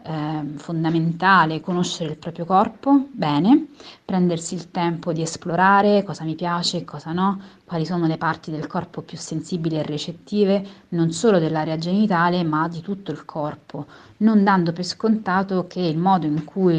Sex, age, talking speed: female, 30-49, 165 wpm